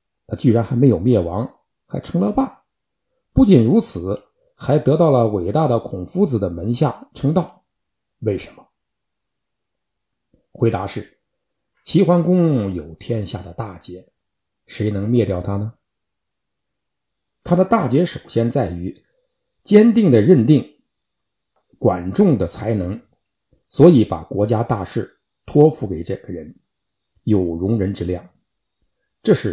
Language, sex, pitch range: Chinese, male, 105-165 Hz